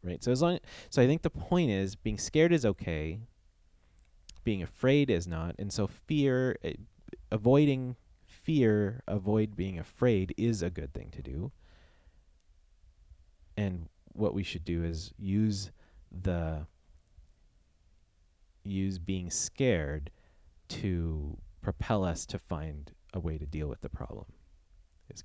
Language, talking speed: English, 140 wpm